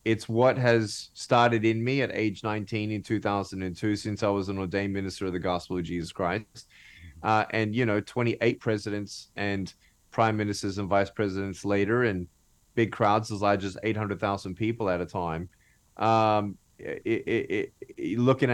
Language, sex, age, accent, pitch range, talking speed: English, male, 30-49, American, 100-115 Hz, 160 wpm